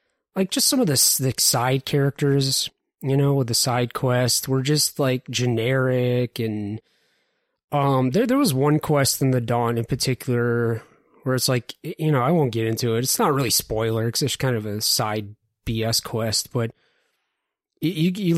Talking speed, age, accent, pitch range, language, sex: 180 wpm, 30-49, American, 115-140 Hz, English, male